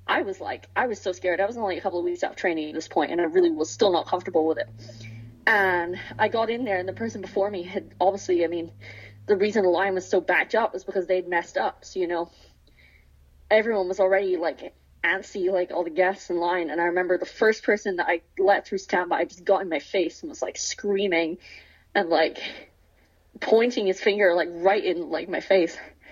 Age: 20-39